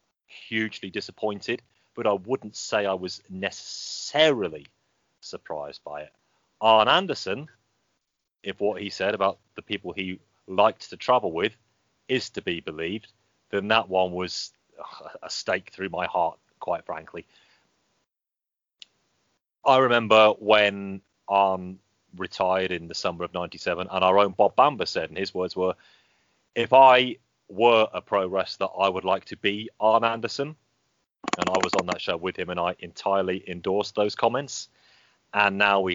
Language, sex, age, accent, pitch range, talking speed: English, male, 30-49, British, 90-115 Hz, 150 wpm